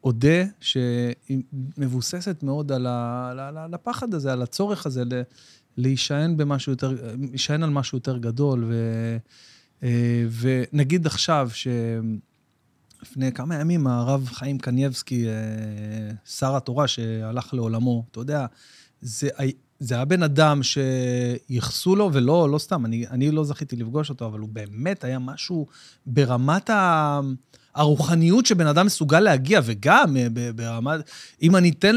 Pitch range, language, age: 125-175 Hz, Hebrew, 30-49